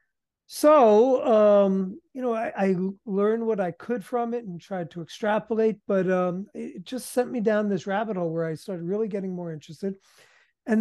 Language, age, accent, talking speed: English, 50-69, American, 190 wpm